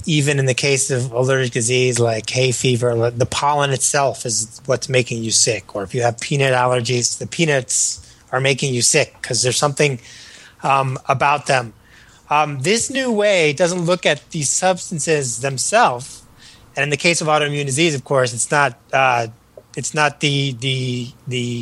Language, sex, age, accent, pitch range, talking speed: English, male, 30-49, American, 125-145 Hz, 175 wpm